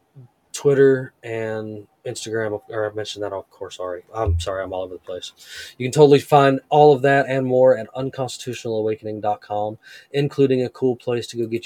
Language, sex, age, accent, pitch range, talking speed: English, male, 20-39, American, 105-120 Hz, 180 wpm